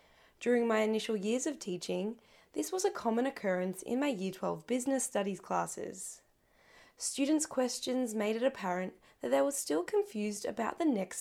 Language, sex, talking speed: English, female, 165 wpm